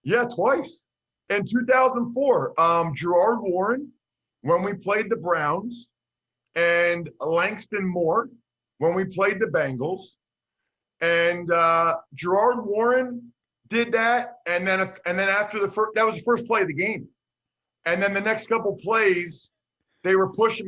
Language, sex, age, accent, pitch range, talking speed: English, male, 40-59, American, 175-230 Hz, 145 wpm